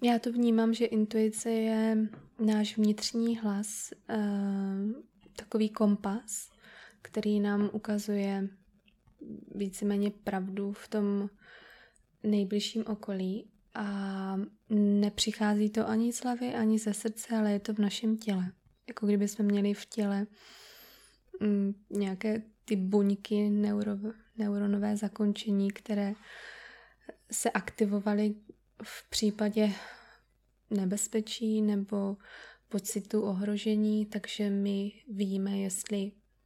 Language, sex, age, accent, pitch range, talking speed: Czech, female, 20-39, native, 200-220 Hz, 100 wpm